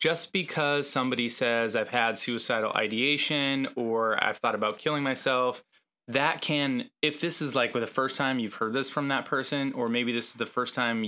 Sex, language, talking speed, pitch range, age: male, English, 195 wpm, 115-135 Hz, 20-39